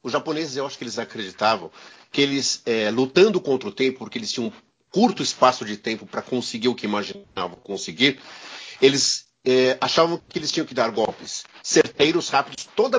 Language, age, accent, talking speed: Portuguese, 50-69, Brazilian, 185 wpm